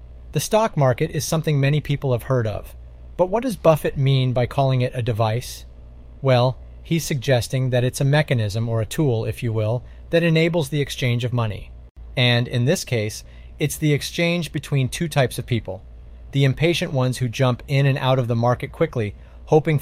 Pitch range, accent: 110-155 Hz, American